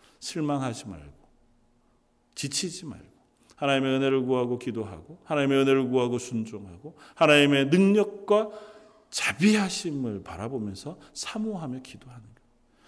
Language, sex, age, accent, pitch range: Korean, male, 40-59, native, 130-220 Hz